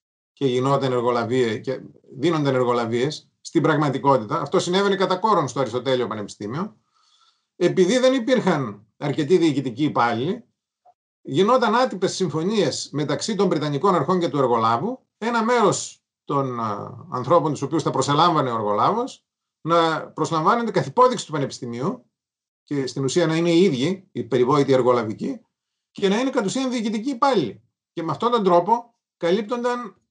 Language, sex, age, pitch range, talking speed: Greek, male, 30-49, 130-200 Hz, 140 wpm